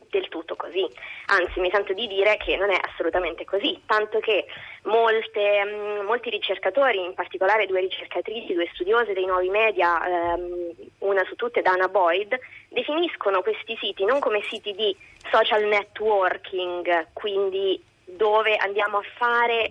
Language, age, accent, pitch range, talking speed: Italian, 20-39, native, 190-235 Hz, 145 wpm